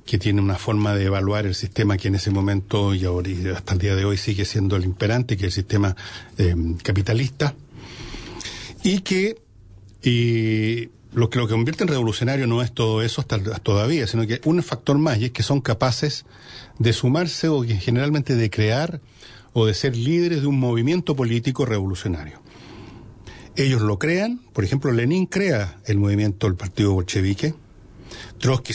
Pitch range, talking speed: 100-130 Hz, 170 wpm